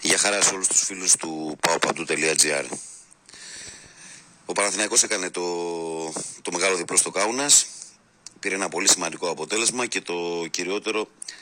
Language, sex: Greek, male